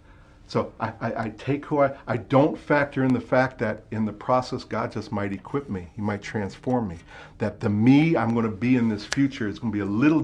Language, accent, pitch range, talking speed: English, American, 105-140 Hz, 245 wpm